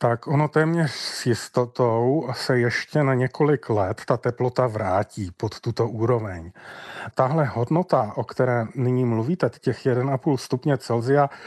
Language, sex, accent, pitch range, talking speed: Czech, male, native, 120-140 Hz, 135 wpm